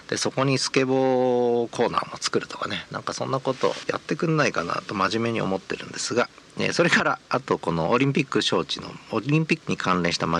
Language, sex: Japanese, male